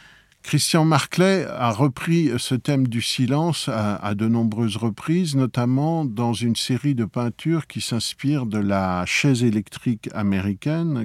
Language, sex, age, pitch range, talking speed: French, male, 50-69, 105-145 Hz, 140 wpm